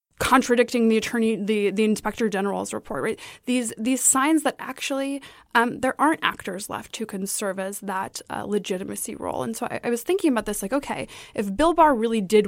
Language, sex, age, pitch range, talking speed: English, female, 20-39, 205-275 Hz, 200 wpm